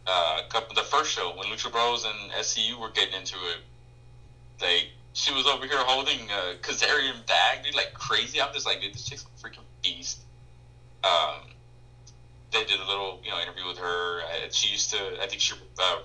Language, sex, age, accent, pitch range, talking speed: English, male, 20-39, American, 95-120 Hz, 195 wpm